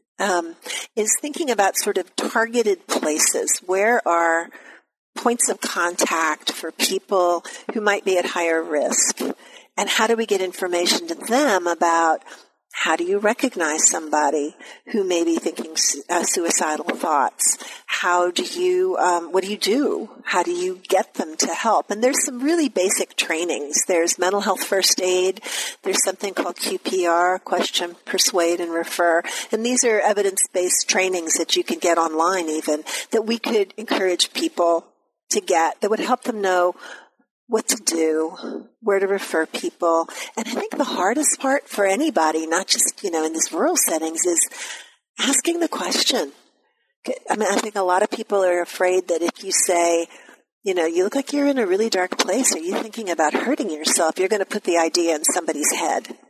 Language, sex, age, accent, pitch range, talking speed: English, female, 50-69, American, 170-245 Hz, 175 wpm